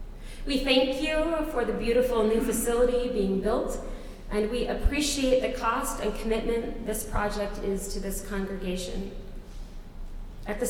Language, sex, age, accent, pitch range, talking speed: English, female, 30-49, American, 205-250 Hz, 140 wpm